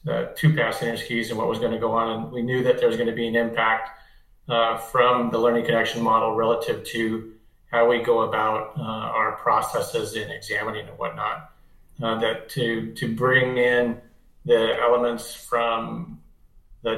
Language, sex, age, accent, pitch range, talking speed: English, male, 40-59, American, 115-145 Hz, 175 wpm